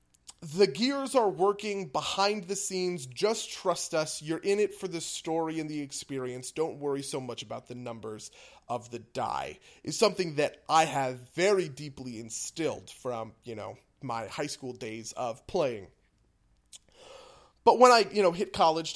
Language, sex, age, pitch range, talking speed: English, male, 30-49, 130-190 Hz, 170 wpm